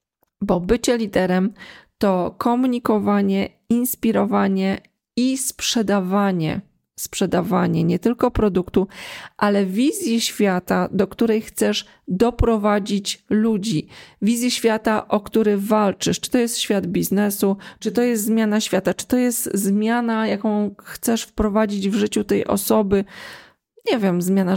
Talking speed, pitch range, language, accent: 120 wpm, 190-225 Hz, Polish, native